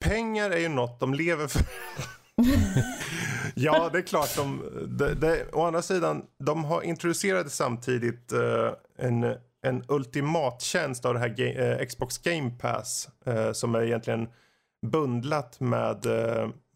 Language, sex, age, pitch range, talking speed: Swedish, male, 30-49, 115-150 Hz, 145 wpm